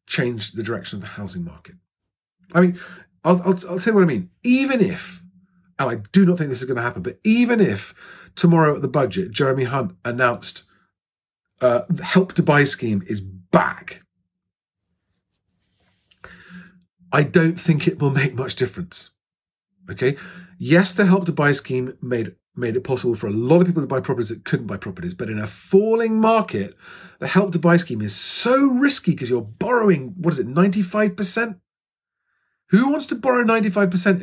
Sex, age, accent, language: male, 40-59, British, English